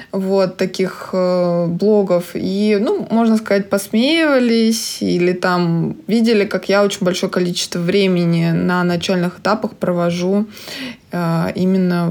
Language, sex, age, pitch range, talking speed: Russian, female, 20-39, 180-215 Hz, 110 wpm